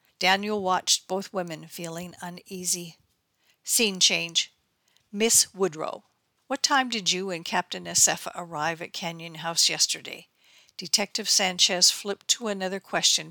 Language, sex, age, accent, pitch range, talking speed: English, female, 50-69, American, 170-215 Hz, 125 wpm